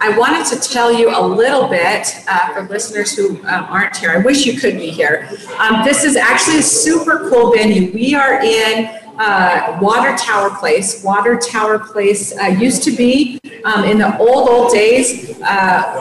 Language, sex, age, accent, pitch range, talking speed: English, female, 40-59, American, 200-240 Hz, 185 wpm